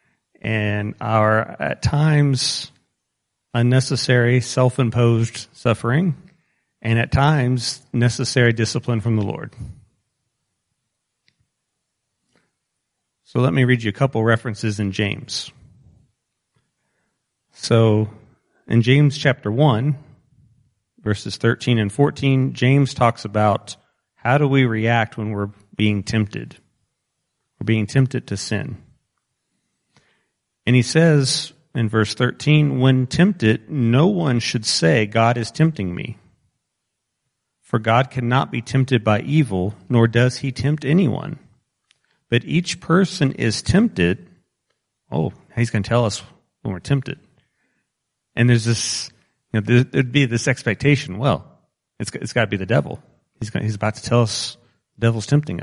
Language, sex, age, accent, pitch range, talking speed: English, male, 40-59, American, 110-135 Hz, 130 wpm